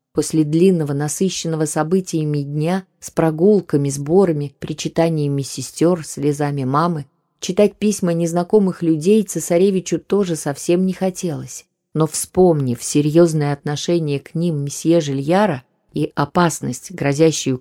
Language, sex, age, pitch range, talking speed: Russian, female, 20-39, 150-190 Hz, 110 wpm